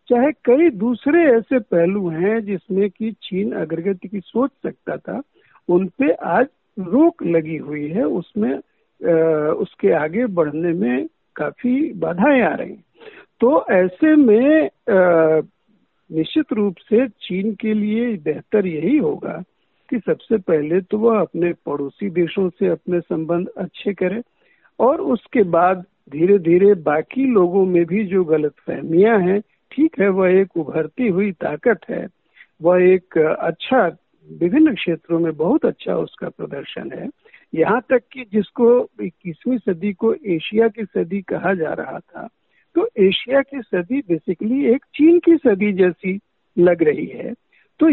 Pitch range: 175-260 Hz